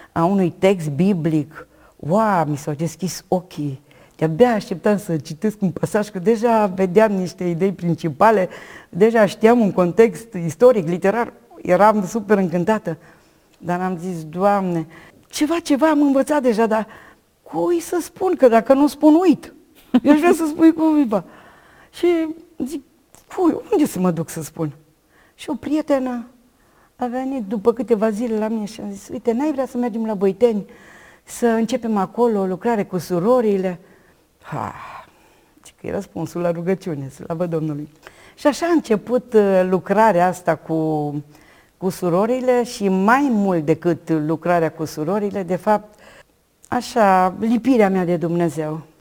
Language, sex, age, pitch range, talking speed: Romanian, female, 50-69, 175-245 Hz, 150 wpm